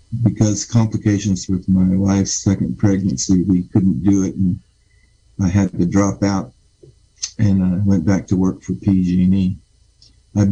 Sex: male